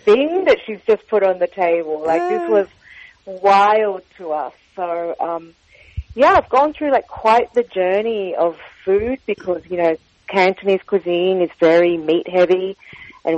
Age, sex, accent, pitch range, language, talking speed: 40-59, female, Australian, 165-215 Hz, English, 160 wpm